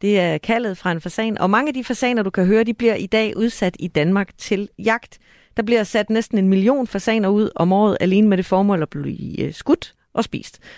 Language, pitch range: Danish, 170-225 Hz